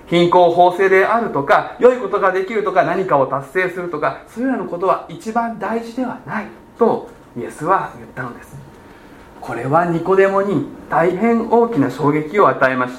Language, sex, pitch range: Japanese, male, 150-200 Hz